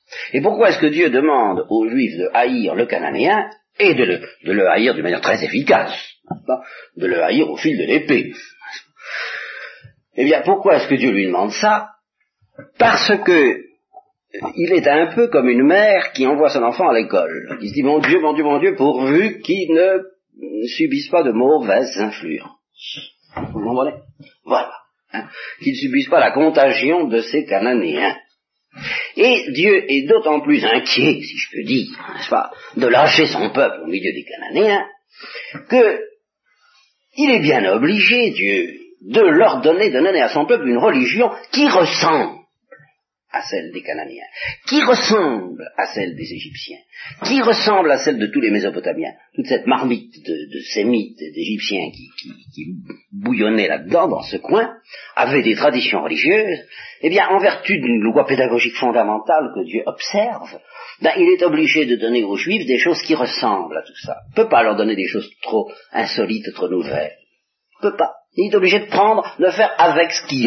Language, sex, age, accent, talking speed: French, male, 50-69, French, 175 wpm